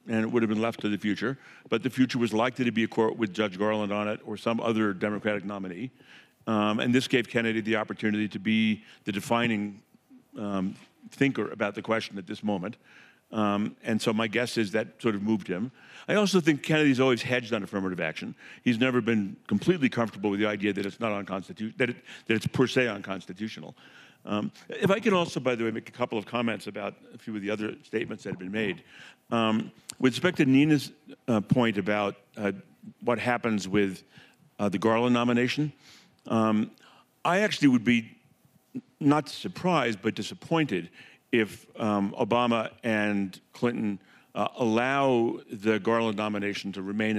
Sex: male